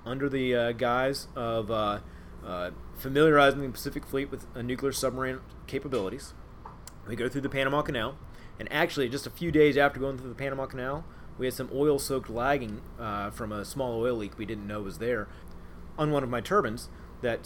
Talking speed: 195 wpm